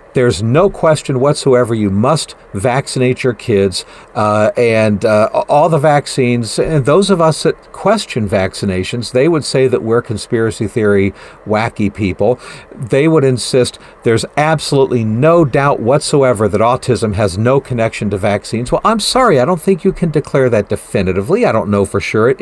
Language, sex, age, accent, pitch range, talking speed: English, male, 50-69, American, 110-155 Hz, 170 wpm